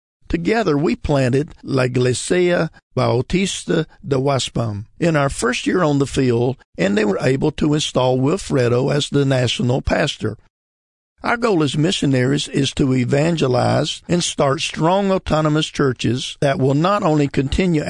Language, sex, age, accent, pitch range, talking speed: English, male, 50-69, American, 125-155 Hz, 145 wpm